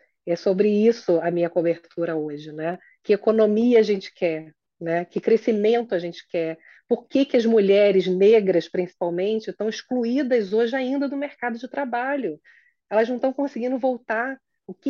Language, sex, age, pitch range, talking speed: Portuguese, female, 30-49, 185-240 Hz, 165 wpm